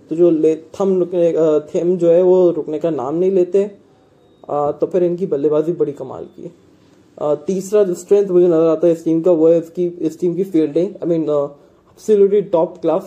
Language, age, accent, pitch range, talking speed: English, 20-39, Indian, 165-195 Hz, 195 wpm